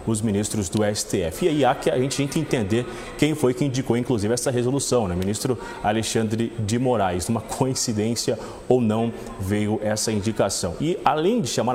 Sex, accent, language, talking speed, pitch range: male, Brazilian, Portuguese, 175 wpm, 110-140 Hz